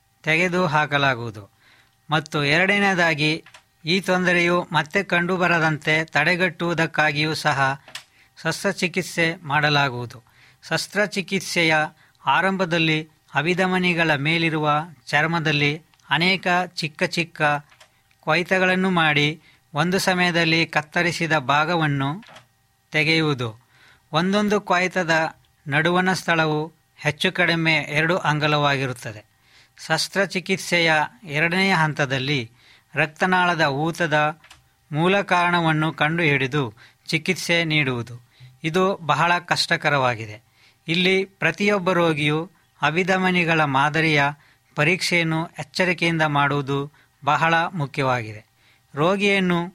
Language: Kannada